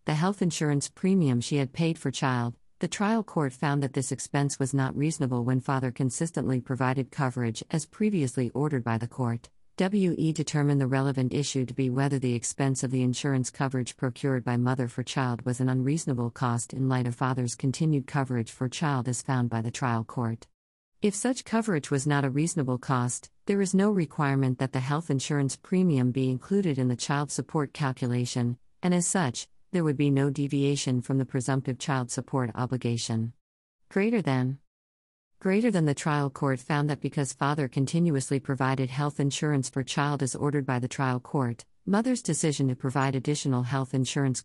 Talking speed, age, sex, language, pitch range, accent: 180 wpm, 50-69, female, English, 125-150 Hz, American